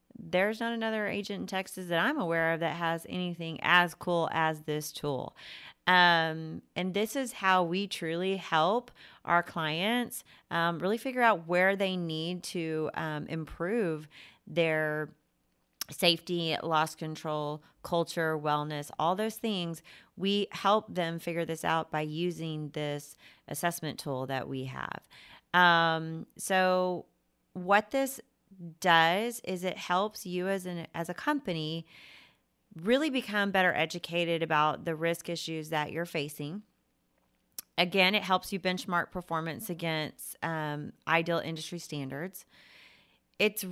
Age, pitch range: 30-49, 160-190 Hz